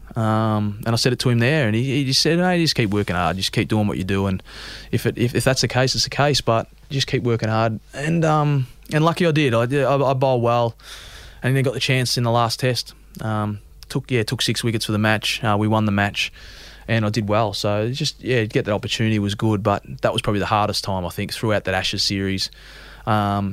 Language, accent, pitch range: English, Australian, 105-130 Hz